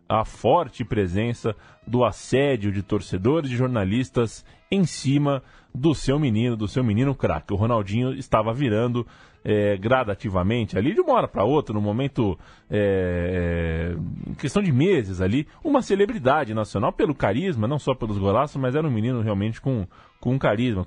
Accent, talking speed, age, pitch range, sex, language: Brazilian, 160 wpm, 20-39, 105-135 Hz, male, Portuguese